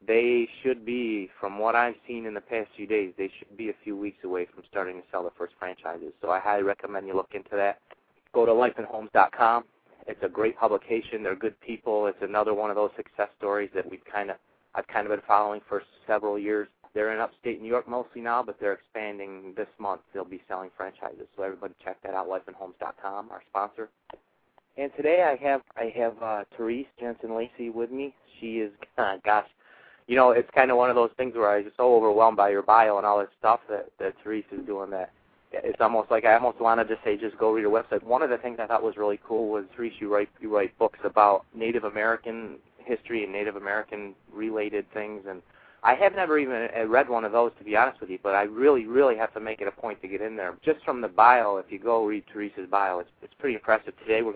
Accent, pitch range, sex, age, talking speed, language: American, 100-120 Hz, male, 30-49, 235 wpm, English